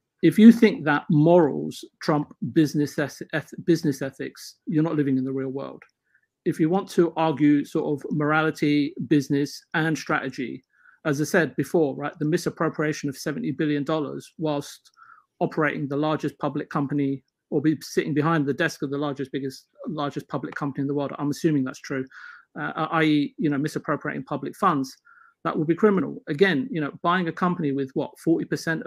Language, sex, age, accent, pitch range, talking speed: English, male, 40-59, British, 145-170 Hz, 175 wpm